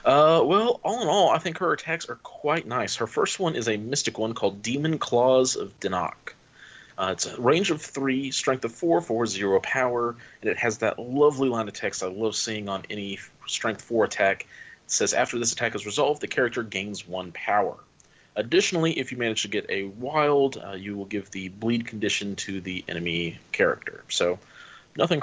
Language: English